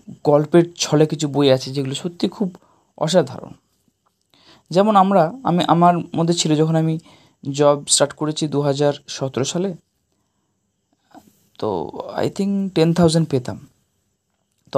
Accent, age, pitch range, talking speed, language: native, 20-39, 130-180 Hz, 115 wpm, Bengali